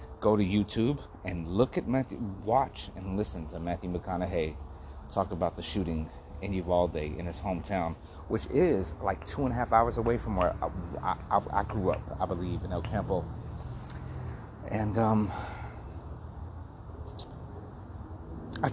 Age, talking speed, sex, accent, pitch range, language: 30-49, 145 wpm, male, American, 85-105 Hz, English